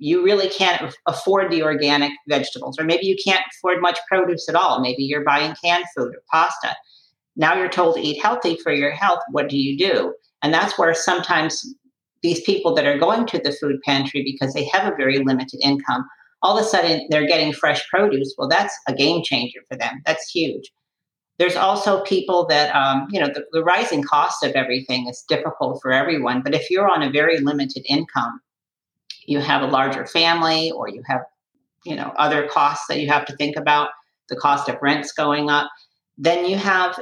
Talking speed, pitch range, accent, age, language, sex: 205 wpm, 145-175 Hz, American, 50-69, English, female